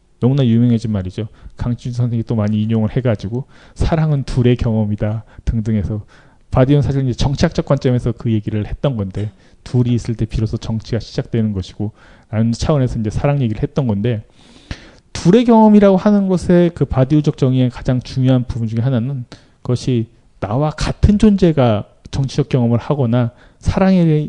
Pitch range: 110-150 Hz